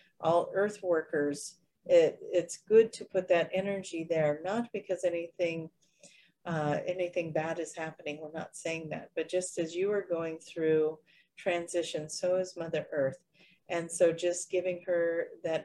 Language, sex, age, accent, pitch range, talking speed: English, female, 40-59, American, 160-180 Hz, 155 wpm